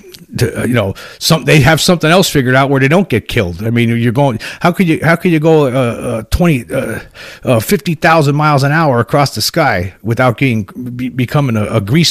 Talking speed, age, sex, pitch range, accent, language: 230 wpm, 40-59, male, 105-140 Hz, American, English